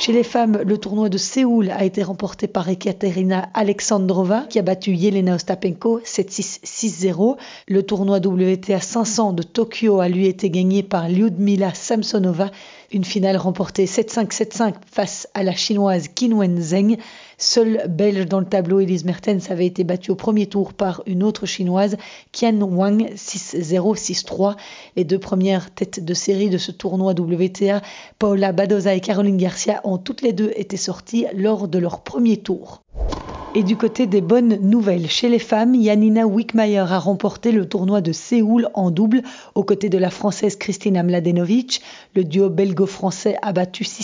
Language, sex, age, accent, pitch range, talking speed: French, female, 30-49, French, 190-215 Hz, 165 wpm